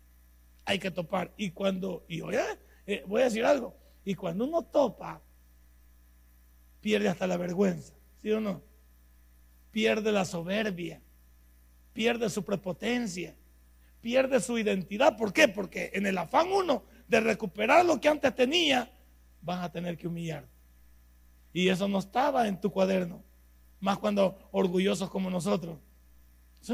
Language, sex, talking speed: Spanish, male, 140 wpm